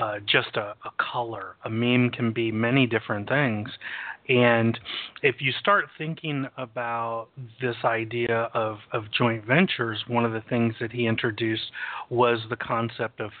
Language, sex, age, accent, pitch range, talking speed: English, male, 30-49, American, 115-135 Hz, 155 wpm